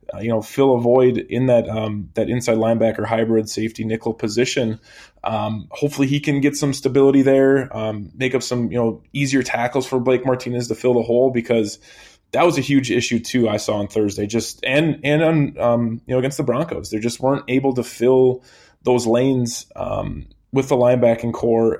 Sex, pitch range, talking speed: male, 110-135 Hz, 200 wpm